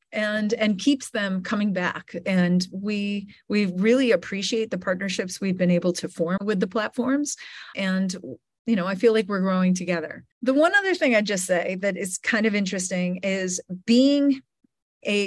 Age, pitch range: 40-59, 175-210 Hz